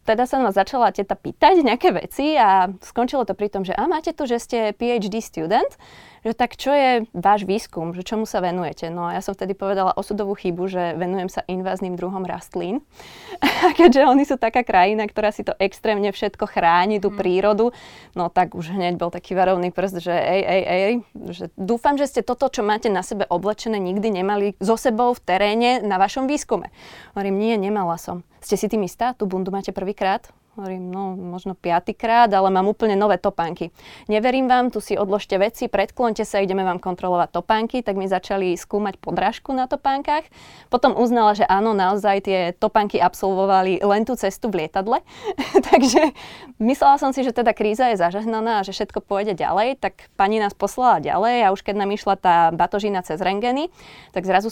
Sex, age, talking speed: female, 20-39, 190 wpm